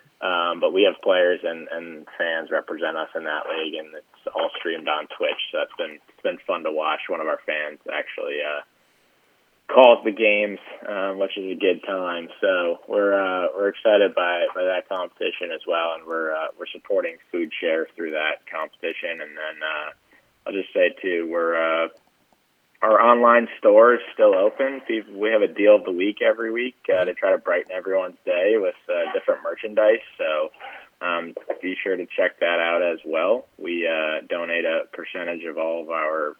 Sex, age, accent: male, 20-39, American